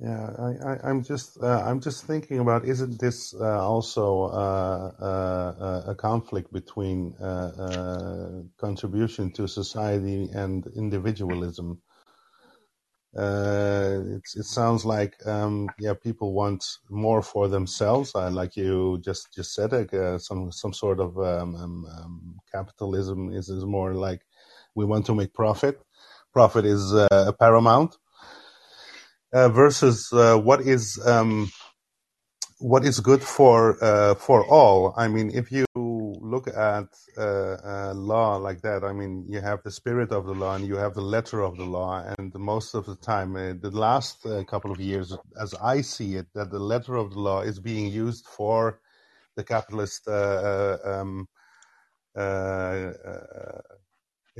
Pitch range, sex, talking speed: 95-115 Hz, male, 155 wpm